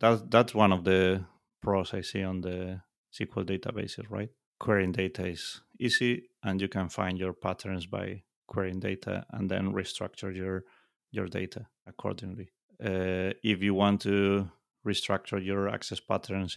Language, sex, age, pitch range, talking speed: English, male, 30-49, 95-105 Hz, 150 wpm